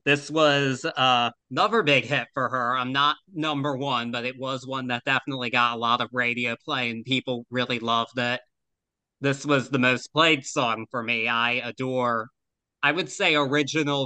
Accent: American